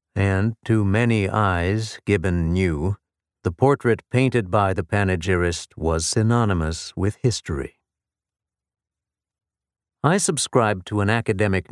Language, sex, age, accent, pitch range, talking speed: English, male, 50-69, American, 95-125 Hz, 110 wpm